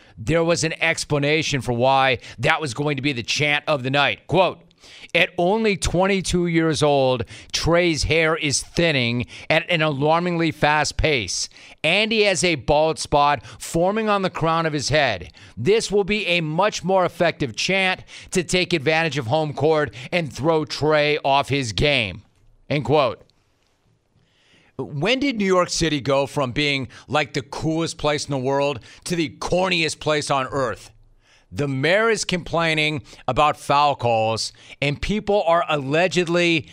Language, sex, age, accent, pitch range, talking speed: English, male, 40-59, American, 130-165 Hz, 160 wpm